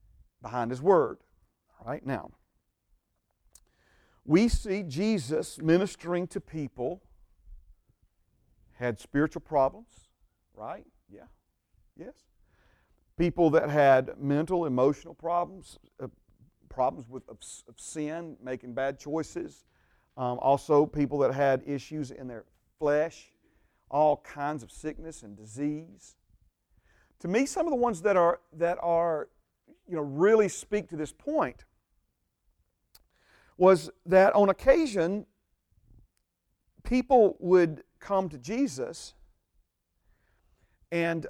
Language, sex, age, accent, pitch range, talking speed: English, male, 40-59, American, 135-180 Hz, 105 wpm